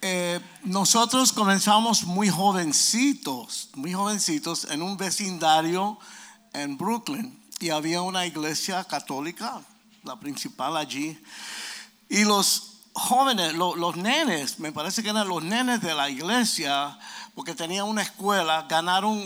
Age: 50-69